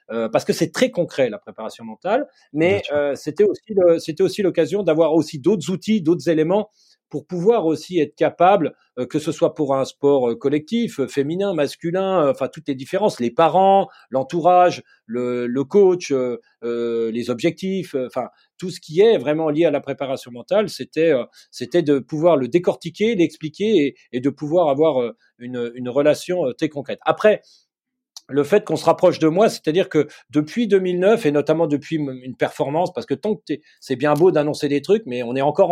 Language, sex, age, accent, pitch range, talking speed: French, male, 40-59, French, 140-185 Hz, 195 wpm